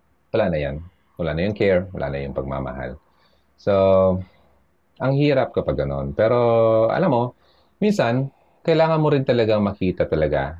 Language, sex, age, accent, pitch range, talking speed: Filipino, male, 30-49, native, 80-110 Hz, 145 wpm